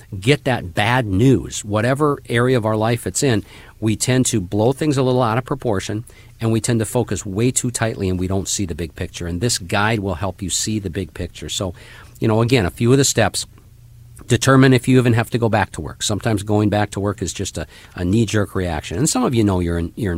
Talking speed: 245 wpm